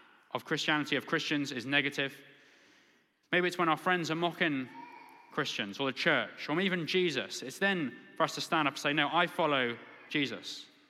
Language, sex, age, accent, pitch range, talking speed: English, male, 20-39, British, 135-170 Hz, 180 wpm